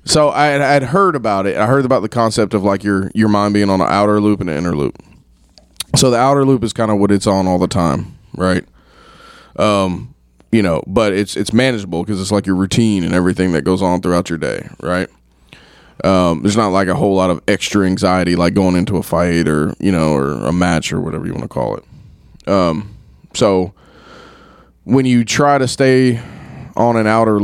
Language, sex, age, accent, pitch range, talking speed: English, male, 20-39, American, 90-115 Hz, 215 wpm